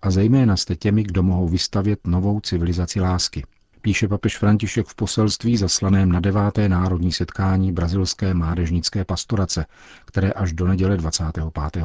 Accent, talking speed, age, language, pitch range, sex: native, 140 wpm, 40-59, Czech, 85-100 Hz, male